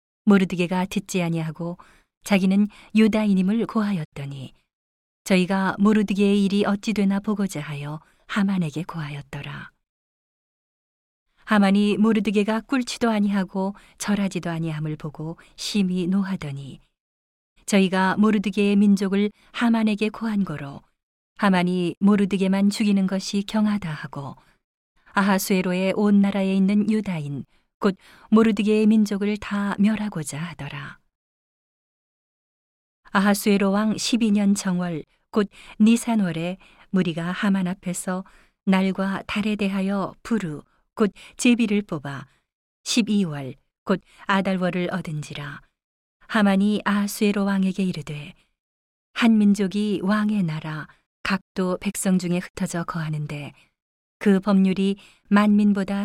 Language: Korean